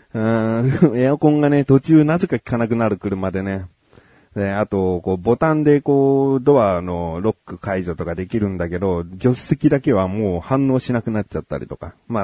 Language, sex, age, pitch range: Japanese, male, 30-49, 95-135 Hz